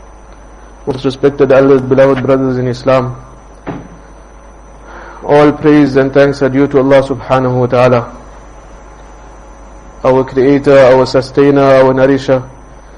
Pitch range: 130-145 Hz